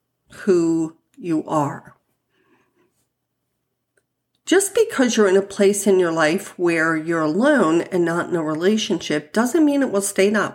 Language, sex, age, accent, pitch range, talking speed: English, female, 50-69, American, 165-215 Hz, 150 wpm